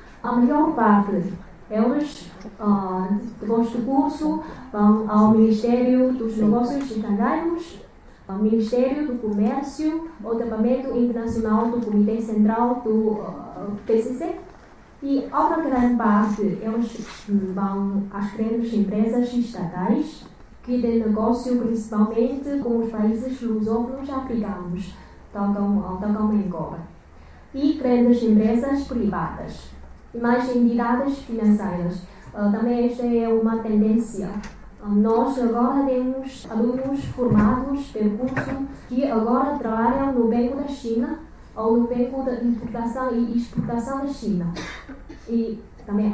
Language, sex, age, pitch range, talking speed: Portuguese, female, 20-39, 215-255 Hz, 120 wpm